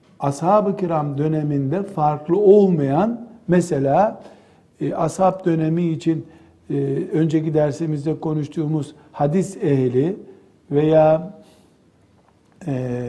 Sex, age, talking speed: male, 60-79, 85 wpm